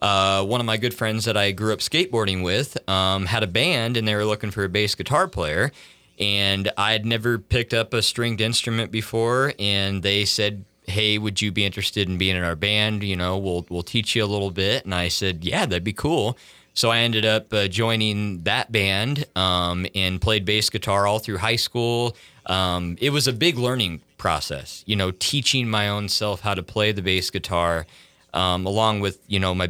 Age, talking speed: 30-49, 215 wpm